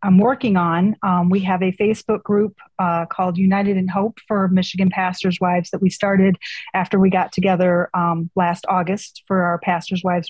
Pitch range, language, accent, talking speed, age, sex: 180-200 Hz, English, American, 185 wpm, 30-49, female